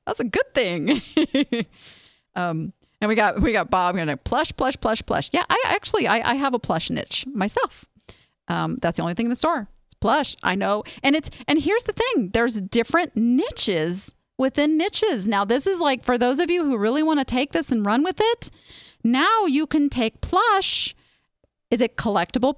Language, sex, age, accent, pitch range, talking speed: English, female, 40-59, American, 230-305 Hz, 200 wpm